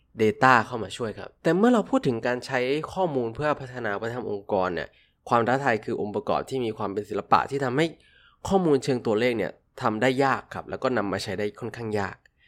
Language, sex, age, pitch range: Thai, male, 20-39, 110-140 Hz